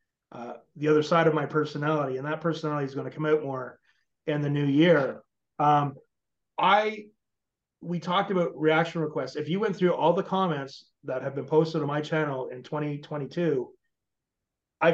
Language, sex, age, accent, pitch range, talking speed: English, male, 30-49, American, 145-170 Hz, 175 wpm